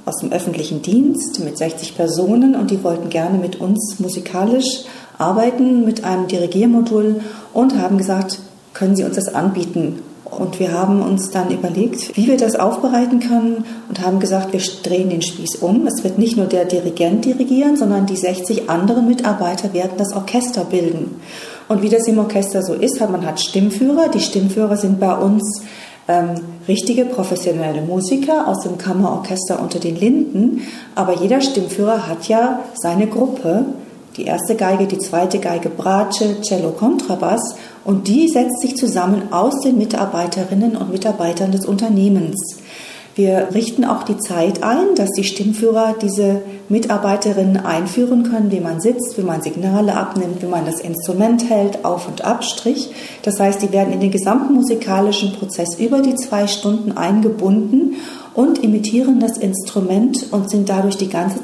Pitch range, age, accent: 185-230 Hz, 40-59, German